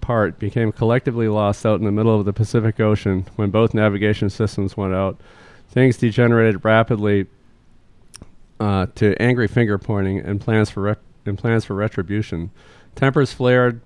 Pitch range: 100-115 Hz